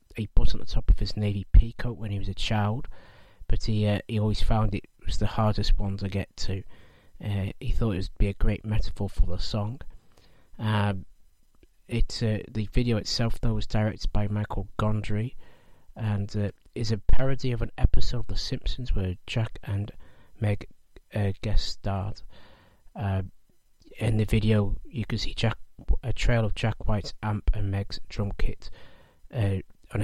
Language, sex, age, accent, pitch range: Japanese, male, 30-49, British, 100-110 Hz